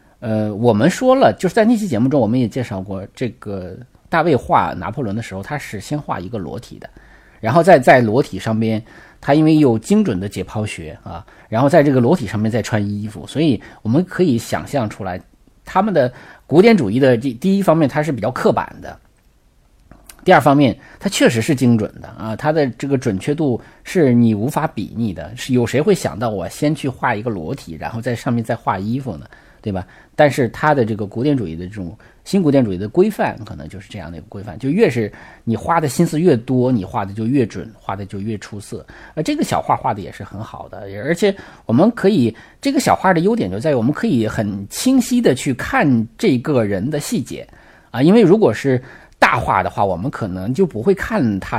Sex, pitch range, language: male, 105-150 Hz, Chinese